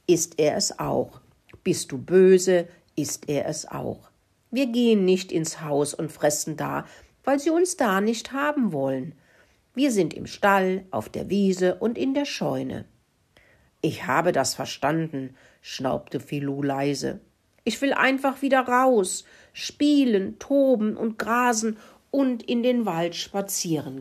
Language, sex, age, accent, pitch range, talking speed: German, female, 60-79, German, 150-220 Hz, 145 wpm